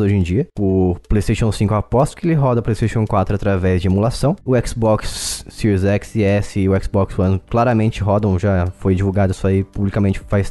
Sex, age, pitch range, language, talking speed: male, 20-39, 100-130 Hz, Portuguese, 200 wpm